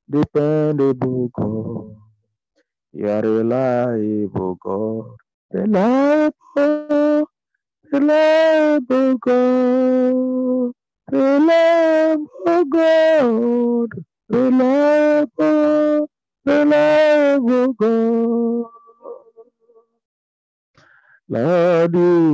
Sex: male